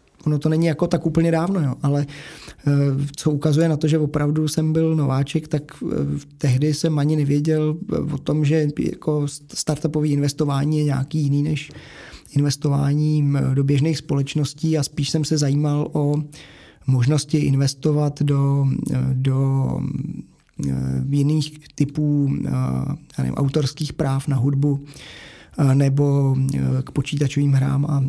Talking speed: 125 wpm